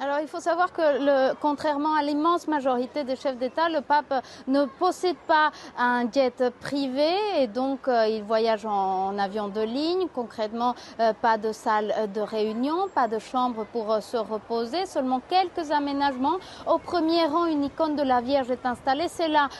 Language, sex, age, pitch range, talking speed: French, female, 30-49, 255-300 Hz, 185 wpm